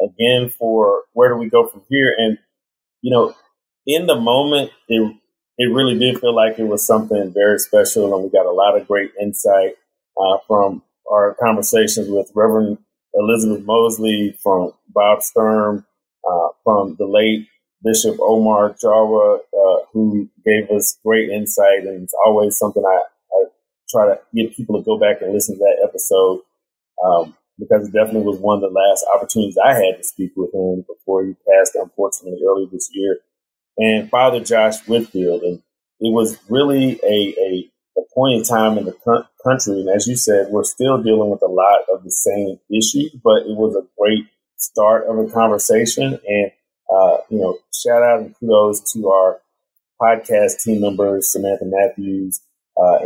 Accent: American